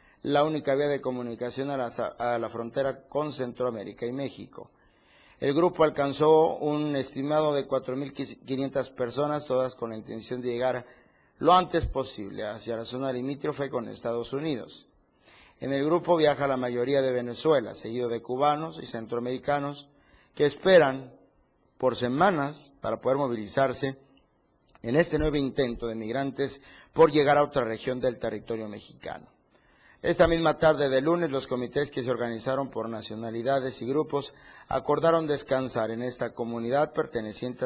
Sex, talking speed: male, 145 wpm